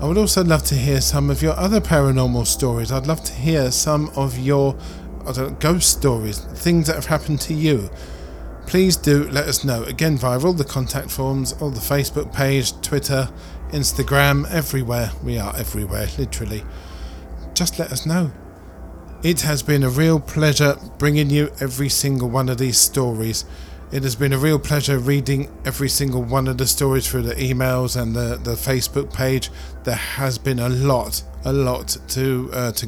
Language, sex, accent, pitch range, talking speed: English, male, British, 115-140 Hz, 175 wpm